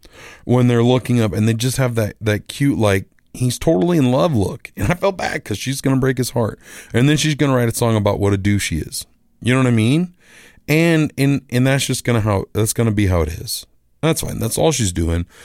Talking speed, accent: 265 wpm, American